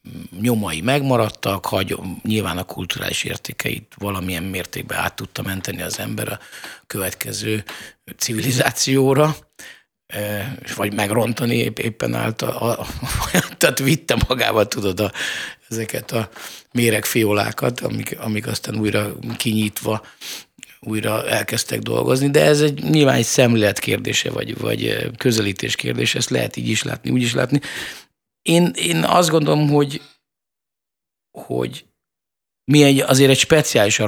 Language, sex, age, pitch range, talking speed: Hungarian, male, 50-69, 95-125 Hz, 125 wpm